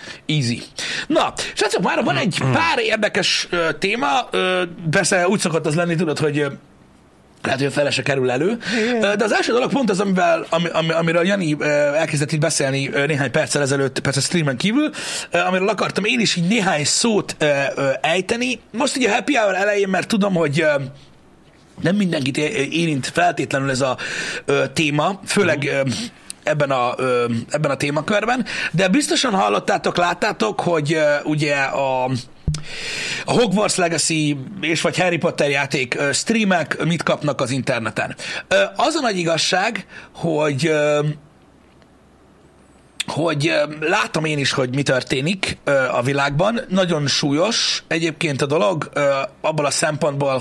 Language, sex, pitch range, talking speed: Hungarian, male, 140-190 Hz, 130 wpm